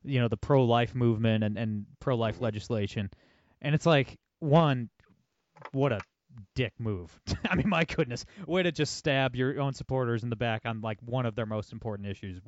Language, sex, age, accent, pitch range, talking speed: English, male, 30-49, American, 115-155 Hz, 195 wpm